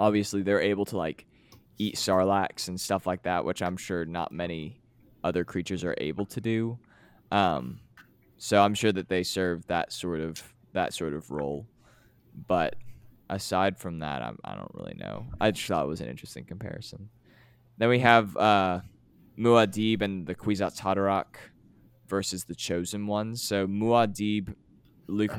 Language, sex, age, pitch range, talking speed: English, male, 20-39, 95-115 Hz, 165 wpm